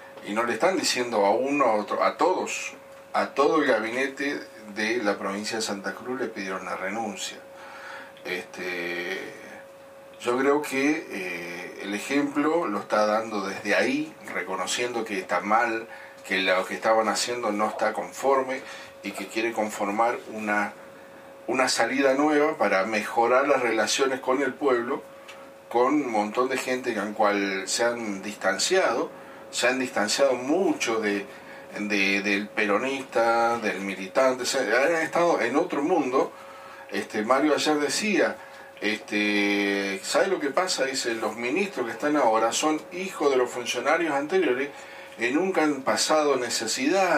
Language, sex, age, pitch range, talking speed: Spanish, male, 40-59, 105-140 Hz, 150 wpm